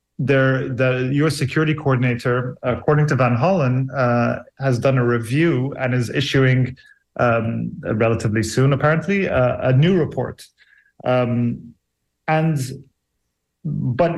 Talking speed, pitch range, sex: 120 wpm, 120-140 Hz, male